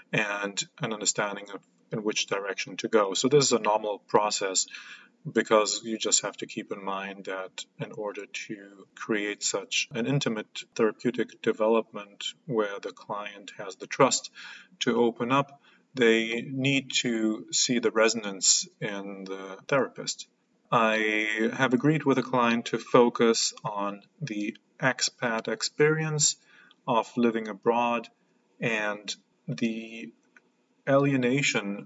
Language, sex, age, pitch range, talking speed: English, male, 30-49, 105-135 Hz, 130 wpm